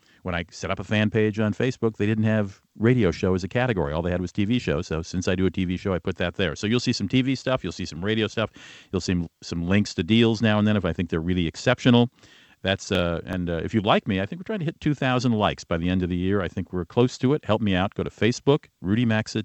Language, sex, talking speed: English, male, 295 wpm